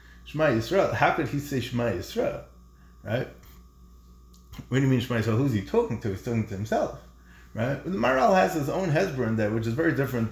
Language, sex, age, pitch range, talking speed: English, male, 20-39, 95-130 Hz, 215 wpm